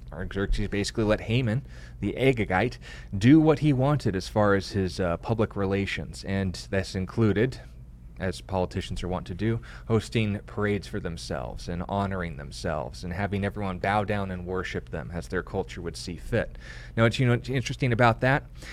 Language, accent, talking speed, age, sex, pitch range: English, American, 175 wpm, 30-49, male, 90-115 Hz